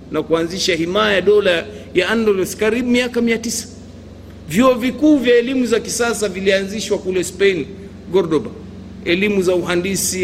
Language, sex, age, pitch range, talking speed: Swahili, male, 50-69, 180-230 Hz, 130 wpm